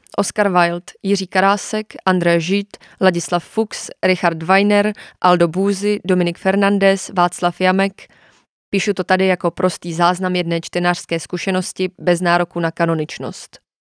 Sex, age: female, 20-39